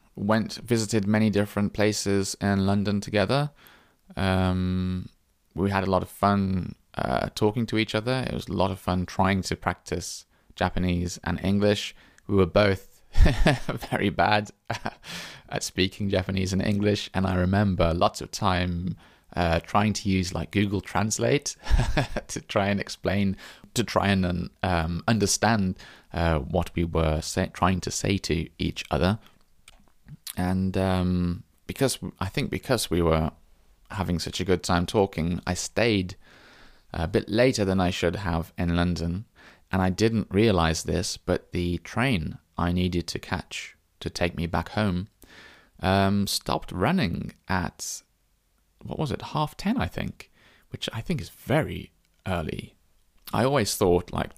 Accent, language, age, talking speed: British, English, 20-39, 150 wpm